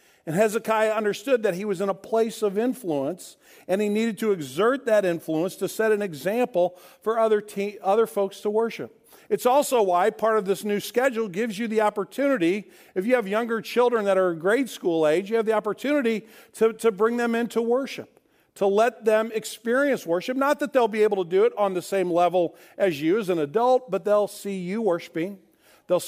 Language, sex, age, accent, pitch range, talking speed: English, male, 50-69, American, 170-220 Hz, 205 wpm